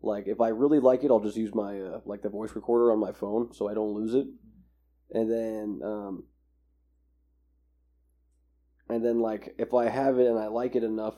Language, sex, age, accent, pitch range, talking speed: English, male, 20-39, American, 70-120 Hz, 205 wpm